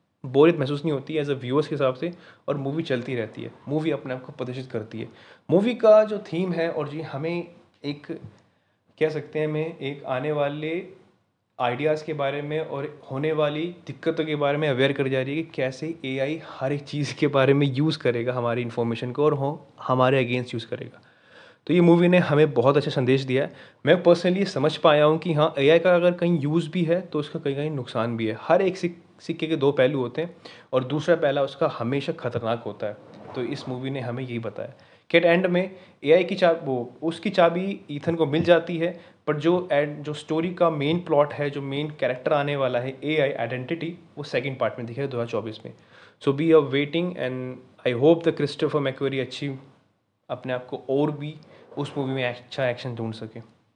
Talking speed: 215 wpm